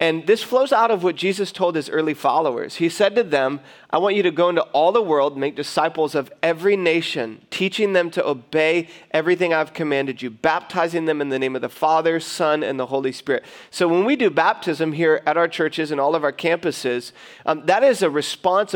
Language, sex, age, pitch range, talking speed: English, male, 30-49, 145-175 Hz, 220 wpm